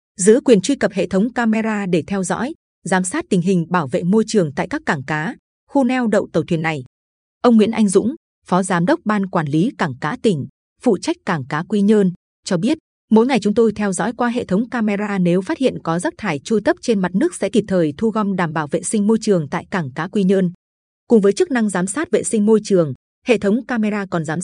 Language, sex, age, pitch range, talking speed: Vietnamese, female, 20-39, 180-225 Hz, 250 wpm